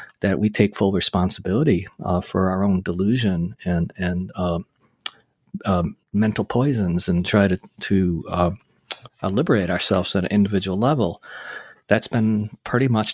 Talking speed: 145 wpm